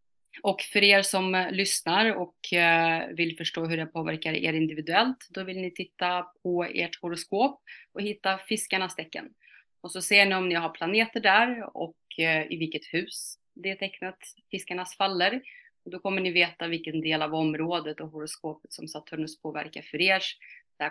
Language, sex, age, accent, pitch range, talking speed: Swedish, female, 30-49, native, 160-190 Hz, 165 wpm